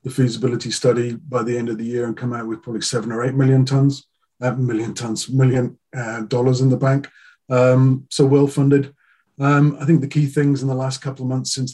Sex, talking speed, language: male, 230 wpm, English